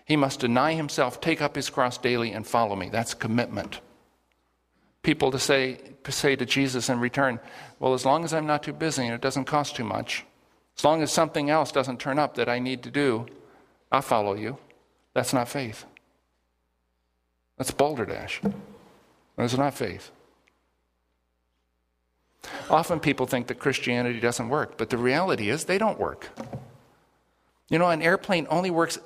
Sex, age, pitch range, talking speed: male, 50-69, 115-160 Hz, 165 wpm